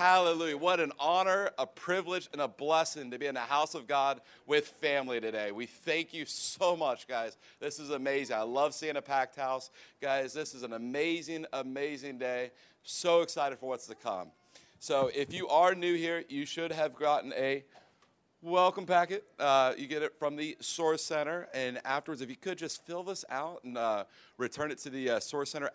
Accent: American